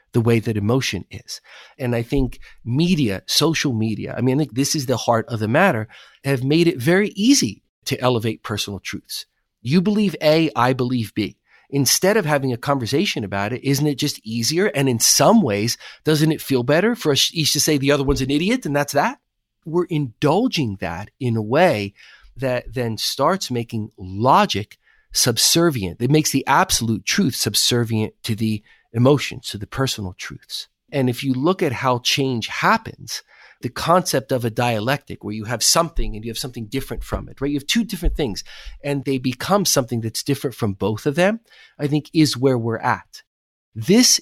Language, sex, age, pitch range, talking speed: English, male, 40-59, 115-150 Hz, 195 wpm